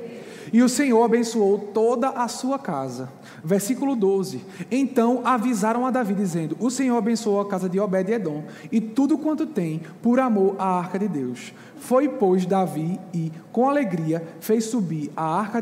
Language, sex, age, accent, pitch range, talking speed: Portuguese, male, 20-39, Brazilian, 185-245 Hz, 165 wpm